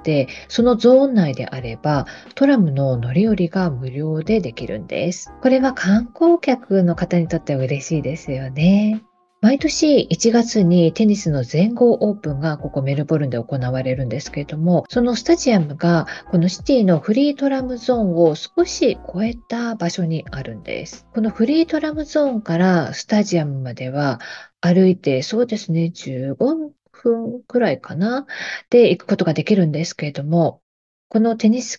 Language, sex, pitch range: Japanese, female, 155-235 Hz